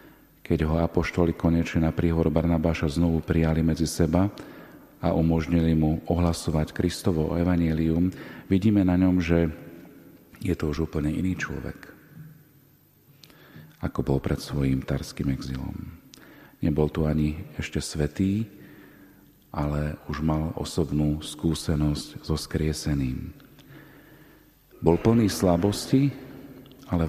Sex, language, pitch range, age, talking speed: male, Slovak, 80-90 Hz, 40-59, 110 wpm